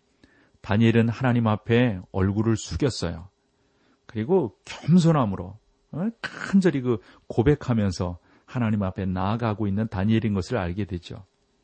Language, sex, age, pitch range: Korean, male, 40-59, 100-135 Hz